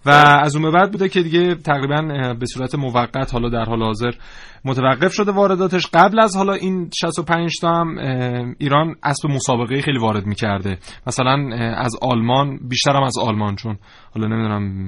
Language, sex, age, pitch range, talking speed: Persian, male, 30-49, 120-145 Hz, 155 wpm